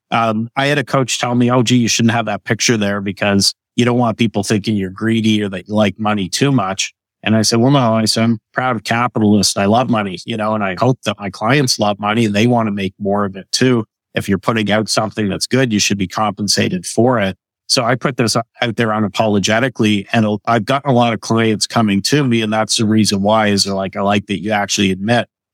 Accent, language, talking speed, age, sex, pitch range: American, English, 250 wpm, 50-69, male, 100-120 Hz